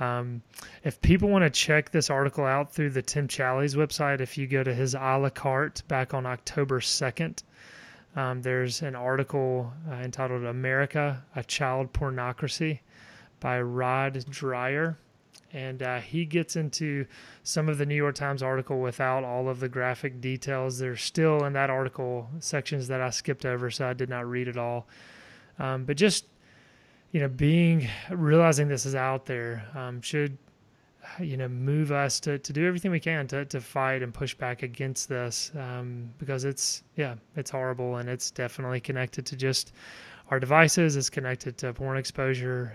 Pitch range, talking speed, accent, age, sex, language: 125-145 Hz, 175 wpm, American, 30-49, male, English